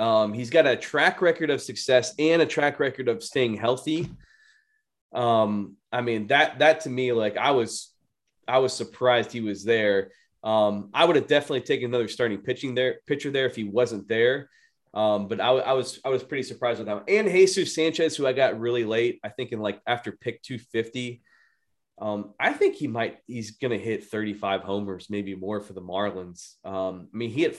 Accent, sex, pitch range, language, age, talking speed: American, male, 105-145 Hz, English, 20-39, 205 wpm